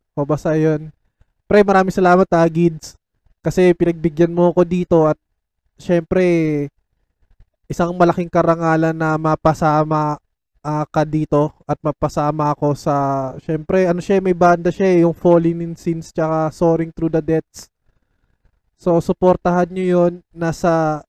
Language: Filipino